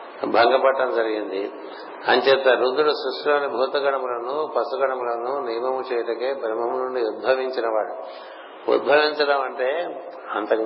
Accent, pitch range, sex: native, 120-145 Hz, male